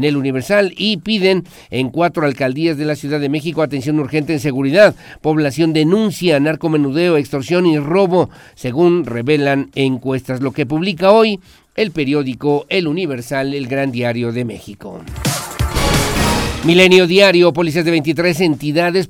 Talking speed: 140 wpm